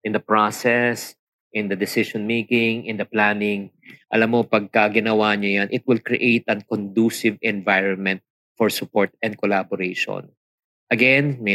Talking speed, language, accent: 135 wpm, Filipino, native